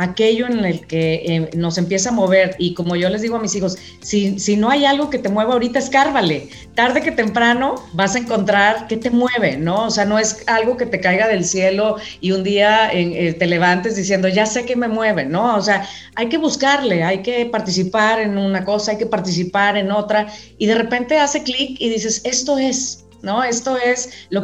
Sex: female